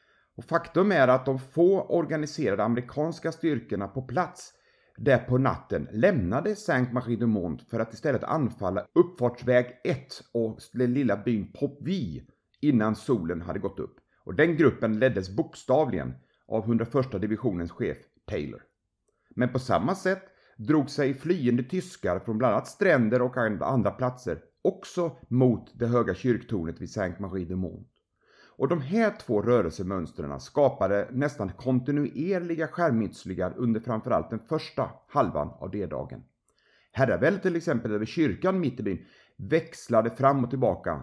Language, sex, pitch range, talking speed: Swedish, male, 110-155 Hz, 140 wpm